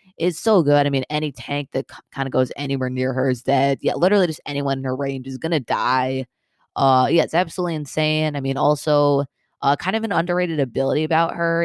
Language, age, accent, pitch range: English, 20-39, American, 135-155 Hz